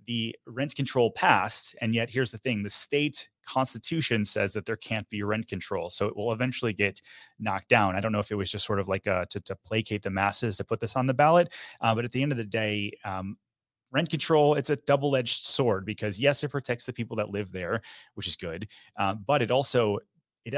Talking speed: 235 wpm